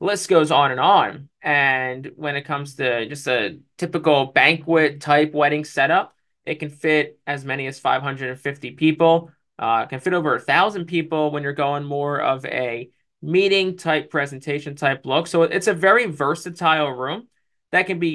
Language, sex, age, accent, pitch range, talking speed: English, male, 20-39, American, 135-155 Hz, 165 wpm